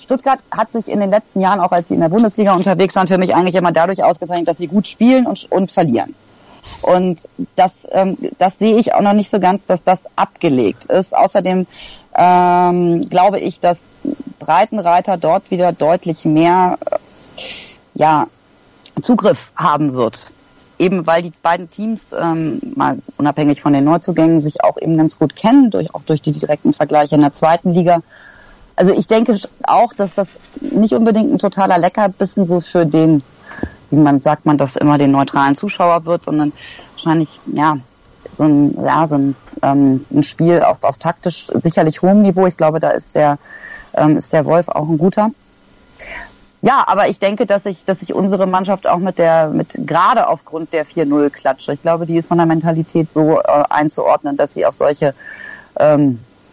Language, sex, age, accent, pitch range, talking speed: German, female, 30-49, German, 150-190 Hz, 185 wpm